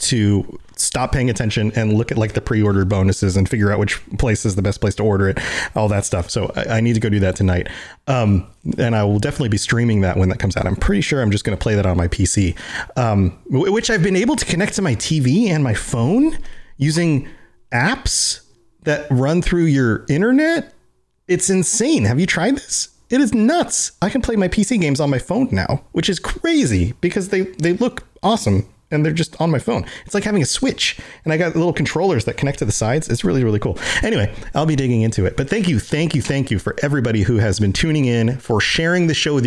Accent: American